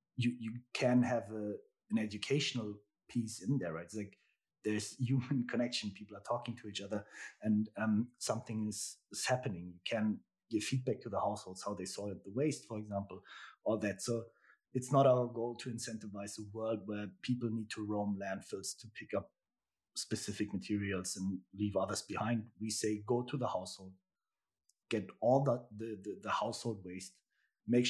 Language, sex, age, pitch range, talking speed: English, male, 30-49, 95-115 Hz, 175 wpm